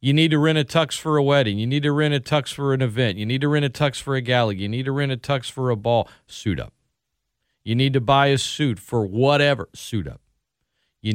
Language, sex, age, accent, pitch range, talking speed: English, male, 40-59, American, 110-150 Hz, 265 wpm